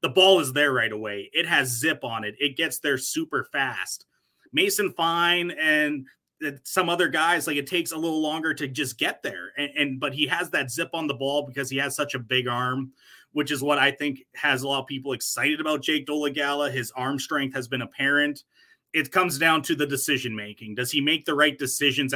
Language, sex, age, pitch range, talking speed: English, male, 30-49, 130-155 Hz, 220 wpm